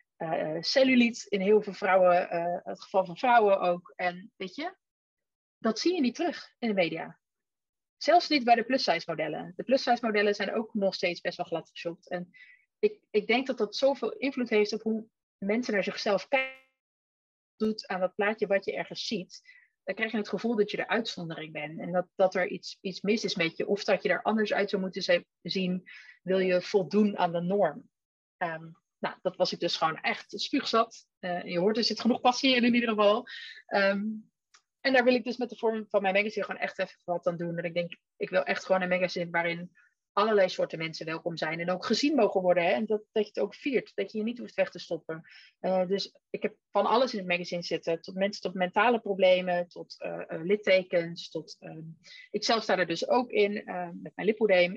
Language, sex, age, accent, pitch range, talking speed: Dutch, female, 30-49, Dutch, 180-225 Hz, 220 wpm